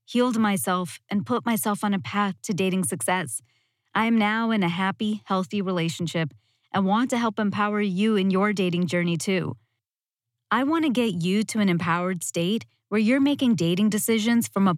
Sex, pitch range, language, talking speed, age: female, 170-230 Hz, English, 185 wpm, 30-49